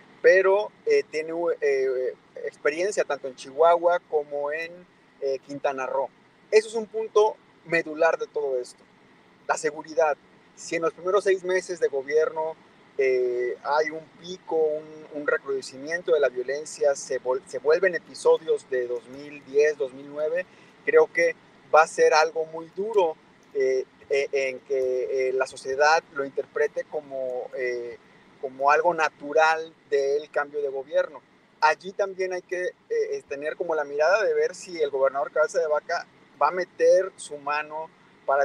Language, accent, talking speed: Spanish, Mexican, 155 wpm